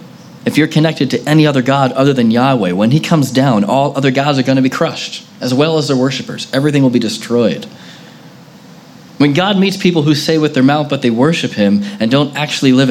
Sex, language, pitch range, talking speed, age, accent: male, English, 125-185 Hz, 220 wpm, 20-39, American